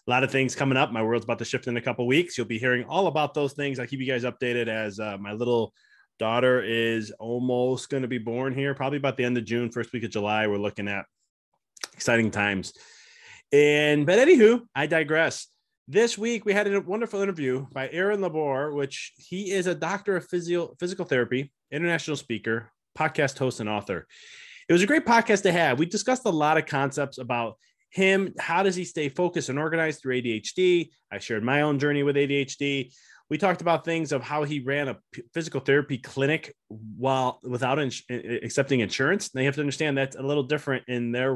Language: English